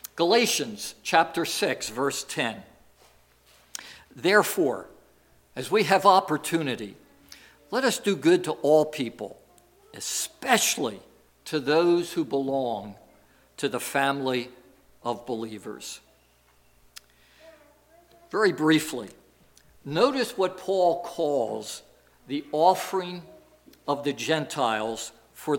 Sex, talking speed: male, 90 wpm